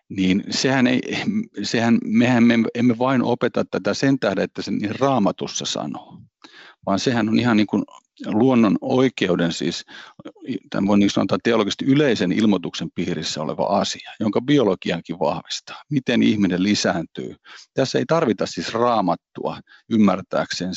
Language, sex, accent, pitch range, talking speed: Finnish, male, native, 95-120 Hz, 110 wpm